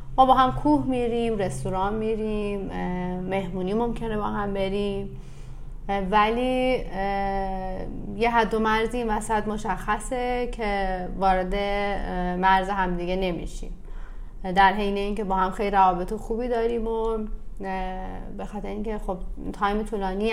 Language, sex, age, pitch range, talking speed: Persian, female, 30-49, 185-220 Hz, 125 wpm